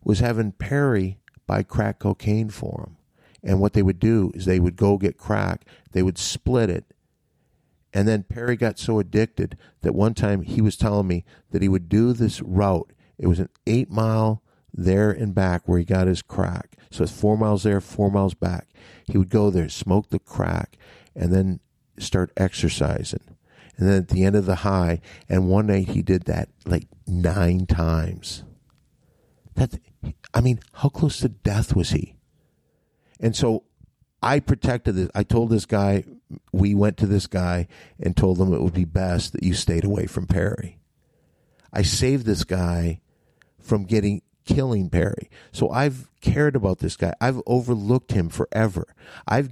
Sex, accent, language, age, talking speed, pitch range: male, American, English, 50-69, 175 wpm, 90-110 Hz